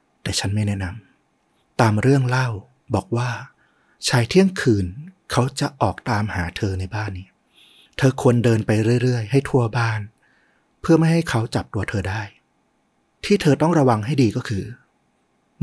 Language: Thai